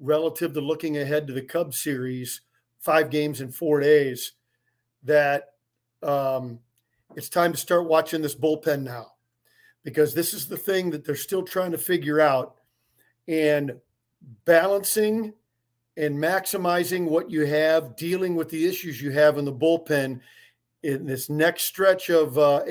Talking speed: 150 wpm